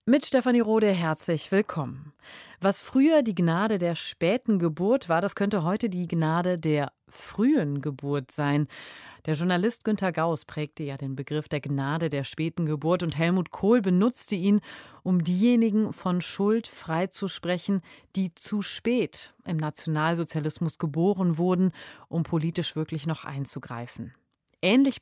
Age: 30-49